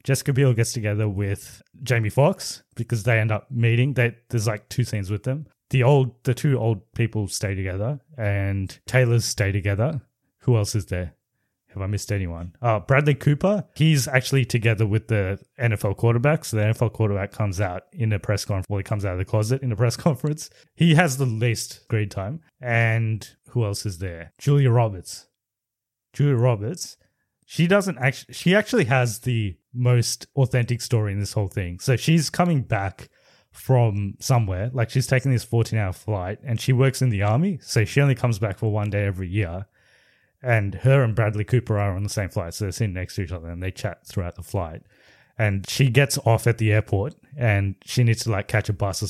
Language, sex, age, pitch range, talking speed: English, male, 20-39, 100-130 Hz, 205 wpm